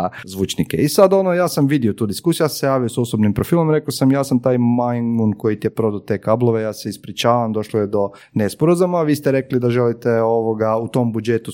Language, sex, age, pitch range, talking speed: Croatian, male, 30-49, 105-135 Hz, 230 wpm